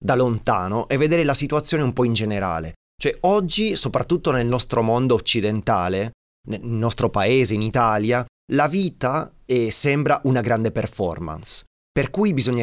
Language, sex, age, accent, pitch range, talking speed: Italian, male, 30-49, native, 110-145 Hz, 145 wpm